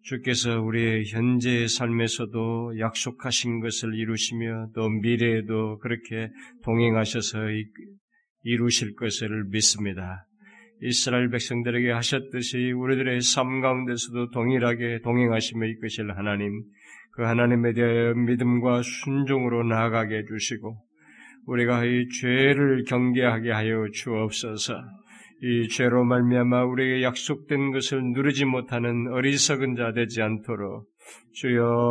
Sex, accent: male, native